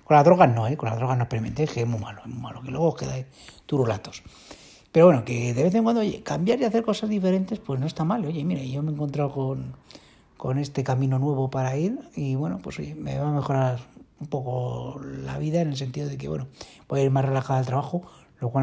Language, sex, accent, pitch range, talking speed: Spanish, male, Spanish, 130-170 Hz, 250 wpm